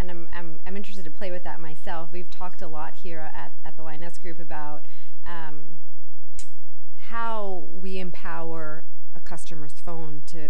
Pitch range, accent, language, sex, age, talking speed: 150-175 Hz, American, English, female, 30-49, 165 wpm